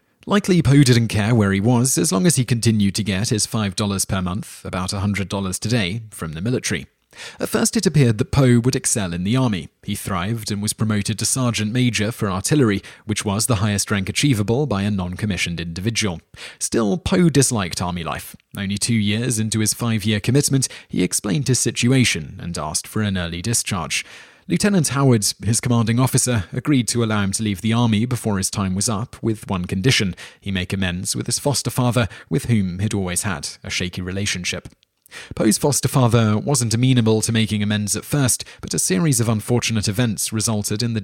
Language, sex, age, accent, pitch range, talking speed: English, male, 30-49, British, 100-125 Hz, 195 wpm